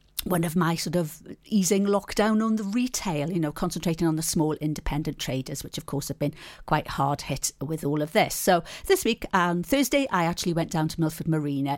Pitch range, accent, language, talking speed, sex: 160-220 Hz, British, English, 215 wpm, female